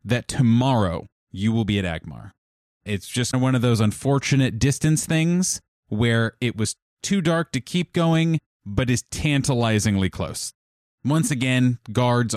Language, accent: English, American